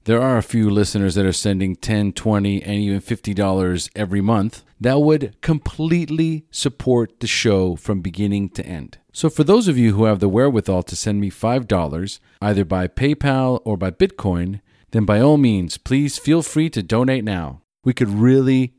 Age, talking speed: 40-59, 180 wpm